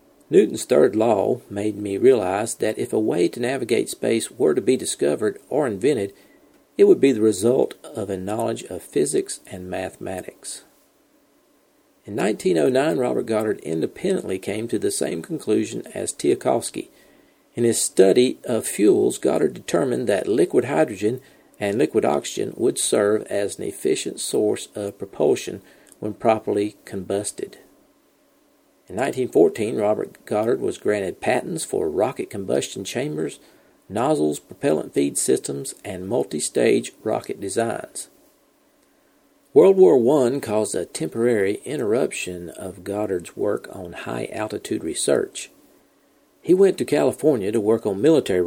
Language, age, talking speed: English, 50-69, 130 wpm